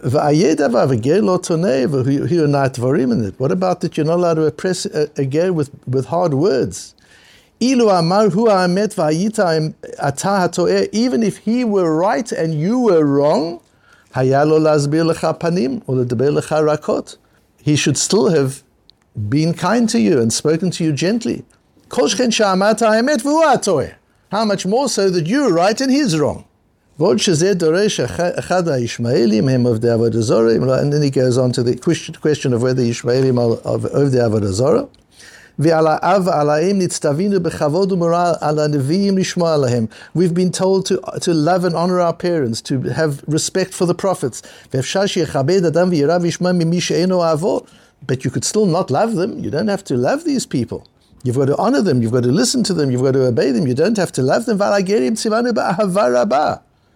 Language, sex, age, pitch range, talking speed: English, male, 60-79, 140-190 Hz, 120 wpm